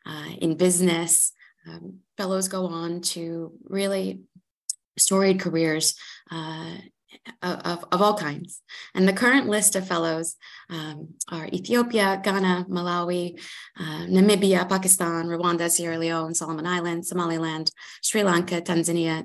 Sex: female